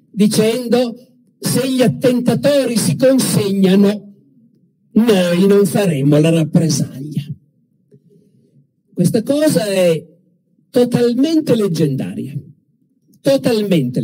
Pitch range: 165-225 Hz